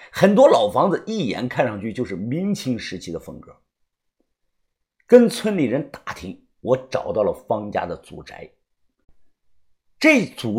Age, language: 50-69, Chinese